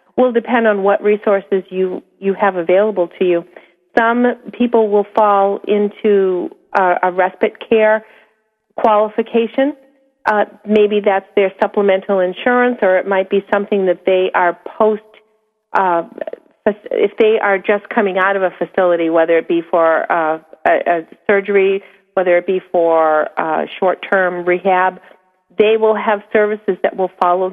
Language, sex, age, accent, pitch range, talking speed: English, female, 40-59, American, 180-220 Hz, 150 wpm